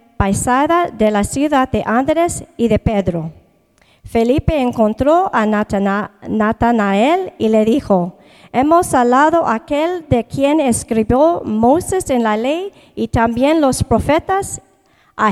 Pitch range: 220-300 Hz